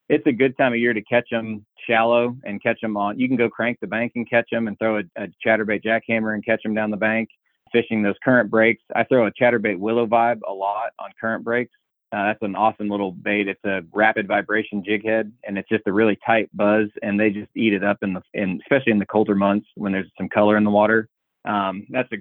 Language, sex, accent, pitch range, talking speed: English, male, American, 100-115 Hz, 250 wpm